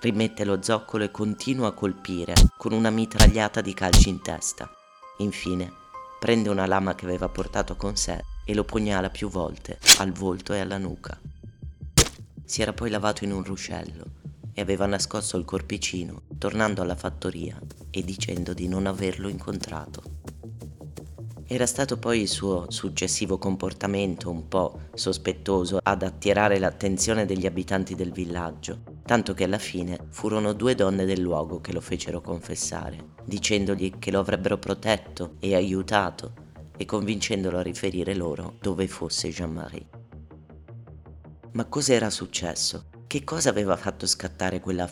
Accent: native